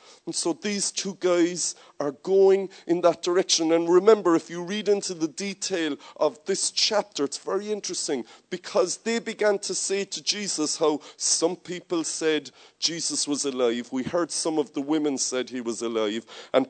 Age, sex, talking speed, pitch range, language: 40-59, male, 175 wpm, 135-190 Hz, English